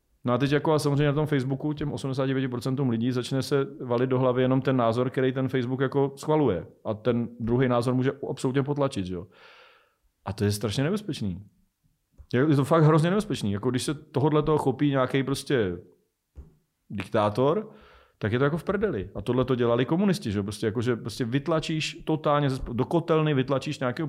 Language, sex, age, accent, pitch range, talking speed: Czech, male, 40-59, native, 105-135 Hz, 180 wpm